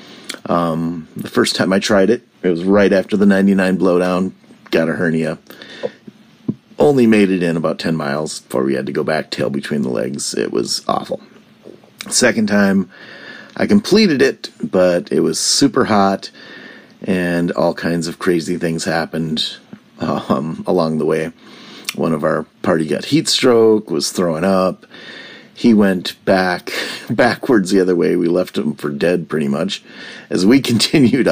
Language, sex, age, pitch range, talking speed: English, male, 40-59, 85-105 Hz, 165 wpm